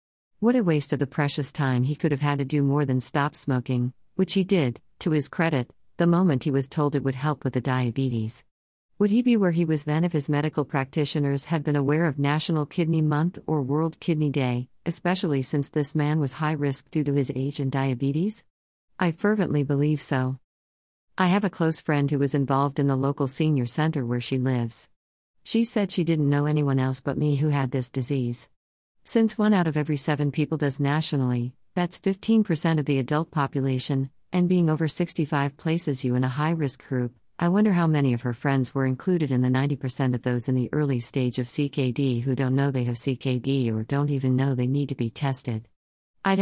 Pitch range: 130-160 Hz